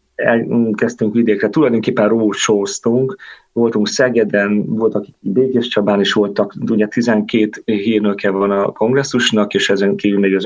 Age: 30-49